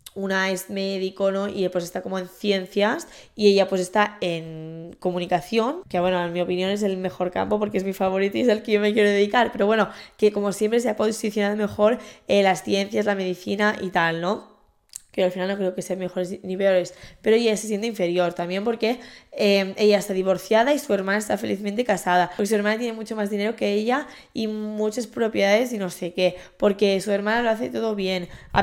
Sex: female